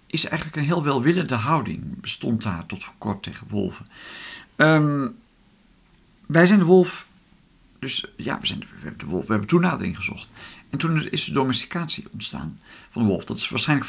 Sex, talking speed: male, 170 wpm